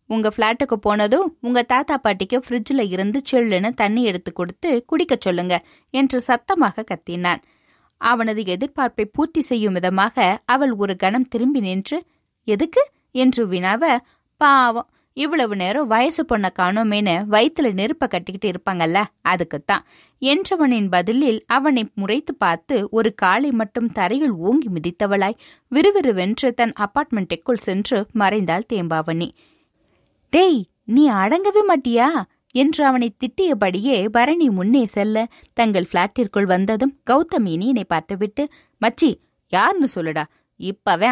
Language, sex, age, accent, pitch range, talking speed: Tamil, female, 20-39, native, 195-270 Hz, 110 wpm